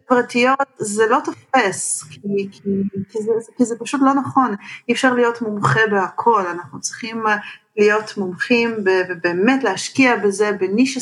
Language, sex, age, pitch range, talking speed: Hebrew, female, 40-59, 205-275 Hz, 145 wpm